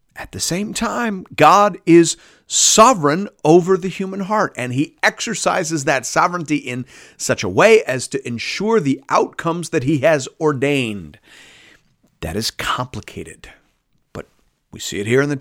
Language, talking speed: English, 150 wpm